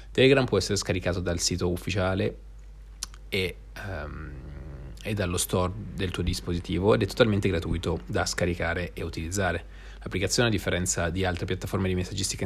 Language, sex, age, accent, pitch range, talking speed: Italian, male, 30-49, native, 90-105 Hz, 145 wpm